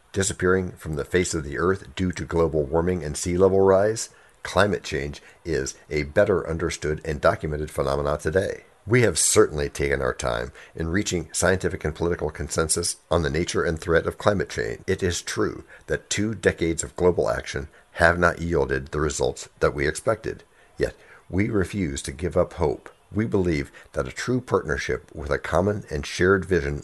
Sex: male